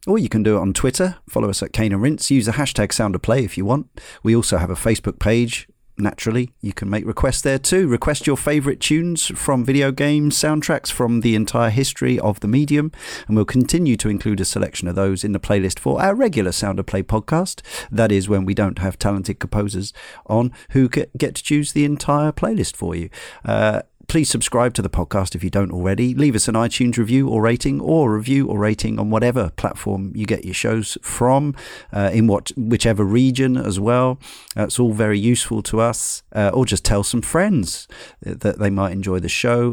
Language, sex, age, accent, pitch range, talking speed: English, male, 40-59, British, 100-130 Hz, 215 wpm